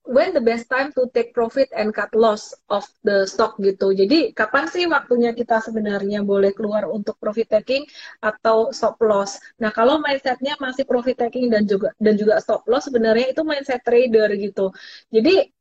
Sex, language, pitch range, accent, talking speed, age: female, Indonesian, 215-260 Hz, native, 175 wpm, 20-39